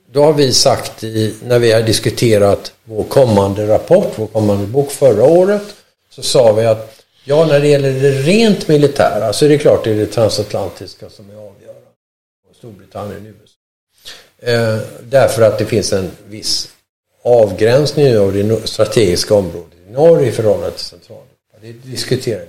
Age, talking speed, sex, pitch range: 60-79, 170 wpm, male, 105-150 Hz